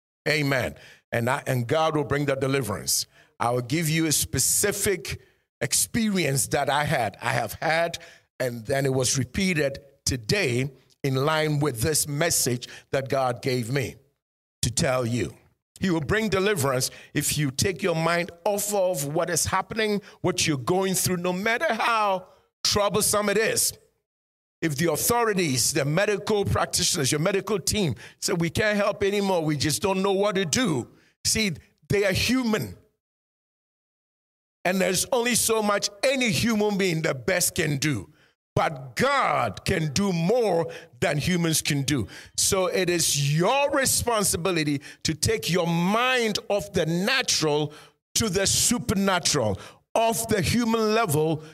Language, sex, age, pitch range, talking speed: English, male, 50-69, 140-200 Hz, 150 wpm